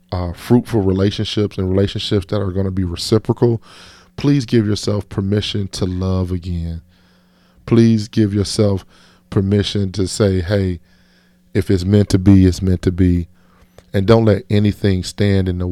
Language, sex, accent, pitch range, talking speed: English, male, American, 90-100 Hz, 155 wpm